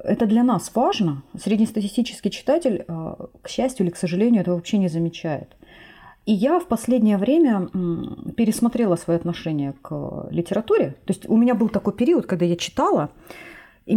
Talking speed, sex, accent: 155 wpm, female, native